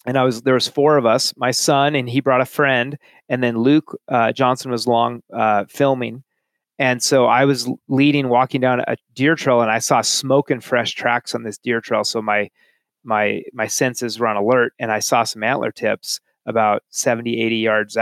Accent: American